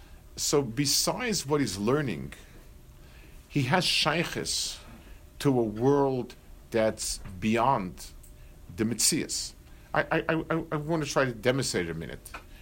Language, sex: English, male